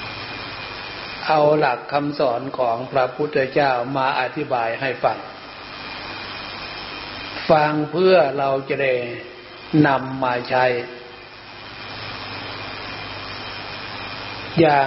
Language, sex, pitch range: Thai, male, 120-145 Hz